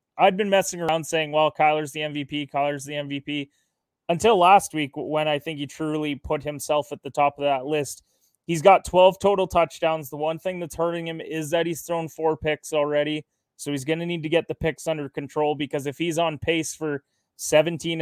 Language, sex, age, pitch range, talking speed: English, male, 20-39, 145-165 Hz, 215 wpm